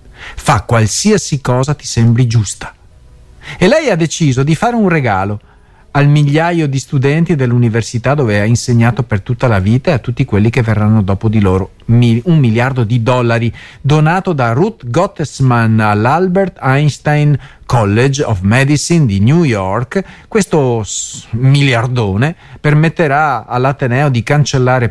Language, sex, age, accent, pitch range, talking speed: Italian, male, 40-59, native, 110-140 Hz, 140 wpm